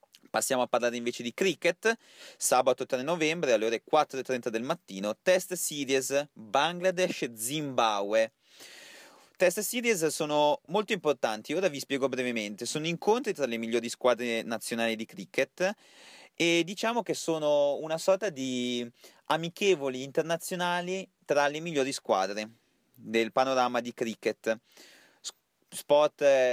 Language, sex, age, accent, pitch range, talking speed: Italian, male, 30-49, native, 120-170 Hz, 120 wpm